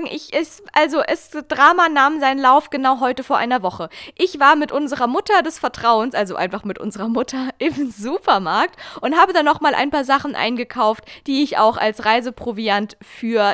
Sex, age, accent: female, 20-39, German